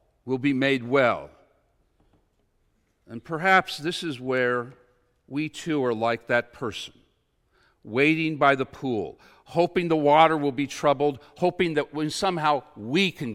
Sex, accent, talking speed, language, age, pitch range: male, American, 135 wpm, English, 60-79, 110-160 Hz